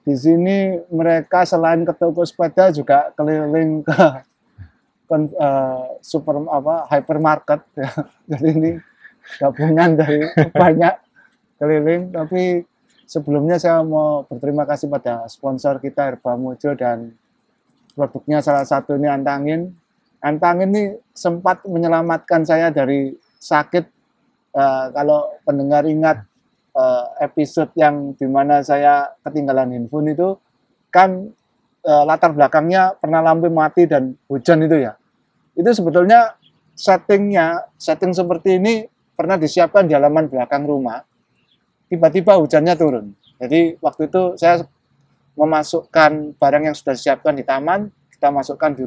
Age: 20-39